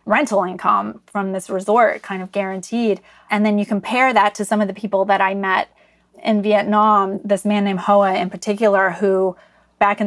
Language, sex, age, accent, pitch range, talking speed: English, female, 20-39, American, 195-215 Hz, 190 wpm